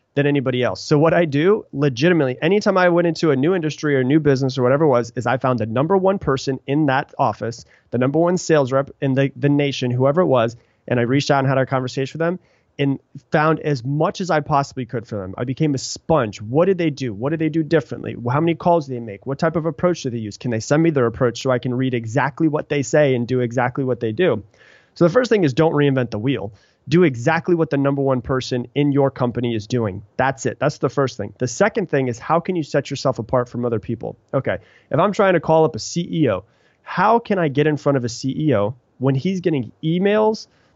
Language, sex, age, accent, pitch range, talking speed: English, male, 30-49, American, 125-160 Hz, 255 wpm